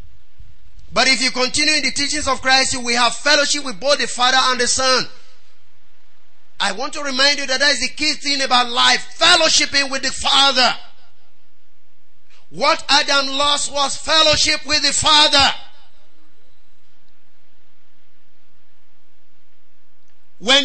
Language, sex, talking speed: English, male, 130 wpm